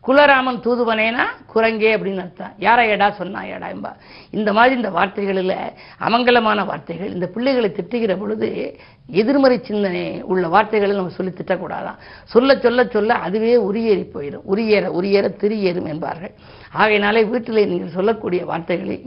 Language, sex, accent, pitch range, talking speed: Tamil, female, native, 185-225 Hz, 130 wpm